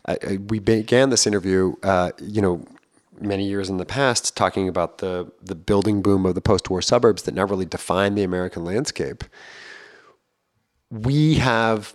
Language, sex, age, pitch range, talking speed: English, male, 30-49, 95-115 Hz, 165 wpm